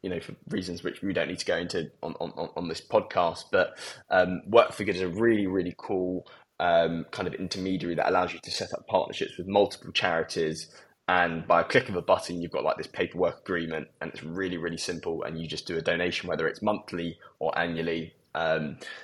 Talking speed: 220 wpm